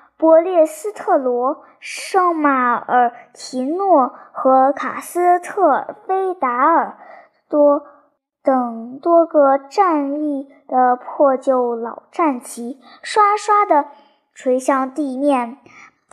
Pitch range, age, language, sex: 275-360 Hz, 10-29, Chinese, male